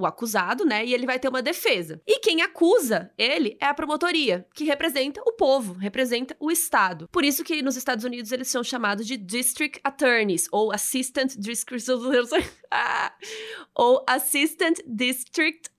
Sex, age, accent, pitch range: female, 20-39, Brazilian, 225-295 Hz